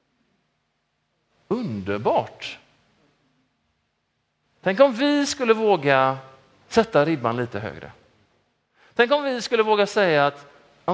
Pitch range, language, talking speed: 150-225 Hz, Swedish, 100 wpm